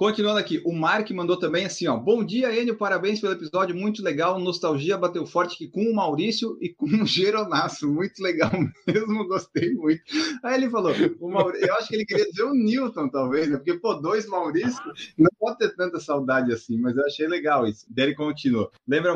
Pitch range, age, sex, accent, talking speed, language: 155-215 Hz, 20-39, male, Brazilian, 205 wpm, Portuguese